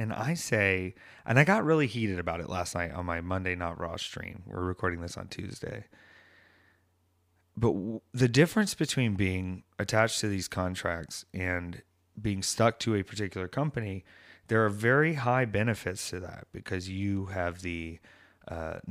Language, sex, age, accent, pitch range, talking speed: English, male, 30-49, American, 90-105 Hz, 160 wpm